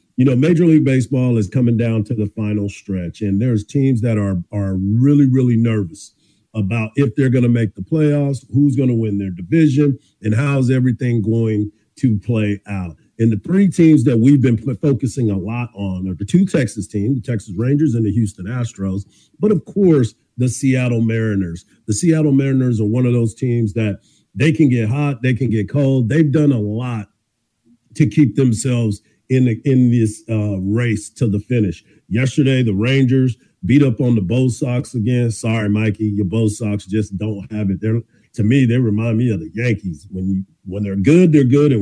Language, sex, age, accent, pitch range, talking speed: English, male, 50-69, American, 105-130 Hz, 200 wpm